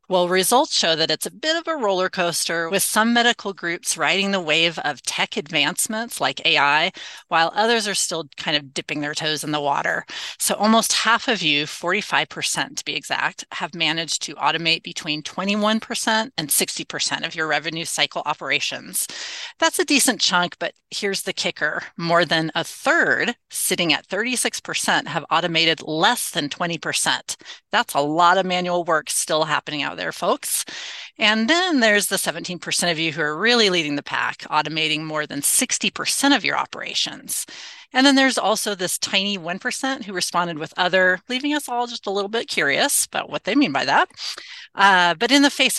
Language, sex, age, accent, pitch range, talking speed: English, female, 30-49, American, 160-210 Hz, 180 wpm